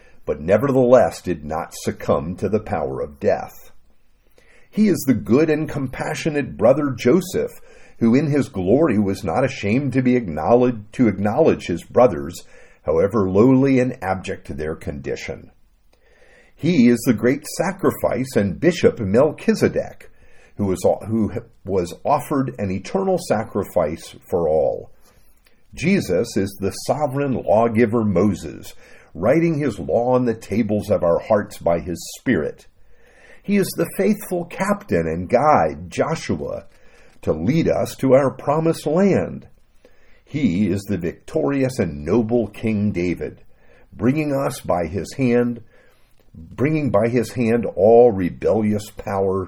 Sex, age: male, 50-69